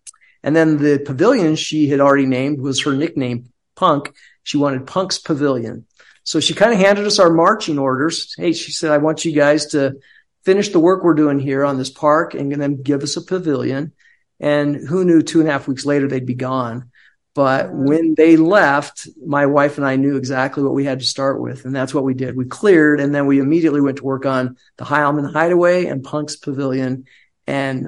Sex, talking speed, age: male, 210 wpm, 50-69